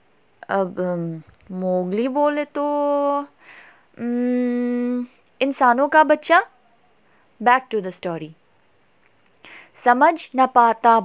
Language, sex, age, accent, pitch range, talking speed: Hindi, female, 20-39, native, 210-285 Hz, 70 wpm